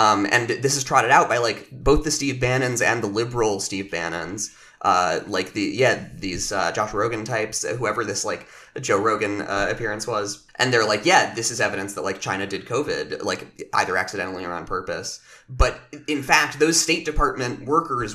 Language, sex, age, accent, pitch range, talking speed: English, male, 20-39, American, 125-170 Hz, 195 wpm